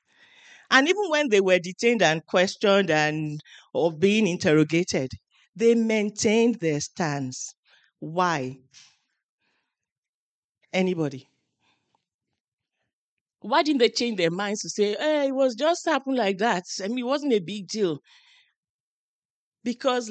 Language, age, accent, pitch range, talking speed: English, 40-59, Nigerian, 175-255 Hz, 120 wpm